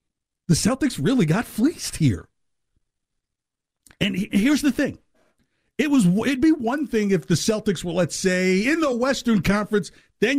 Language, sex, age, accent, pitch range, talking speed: English, male, 50-69, American, 165-230 Hz, 170 wpm